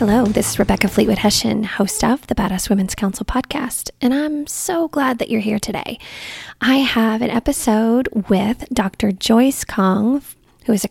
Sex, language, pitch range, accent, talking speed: female, English, 205-260 Hz, American, 175 wpm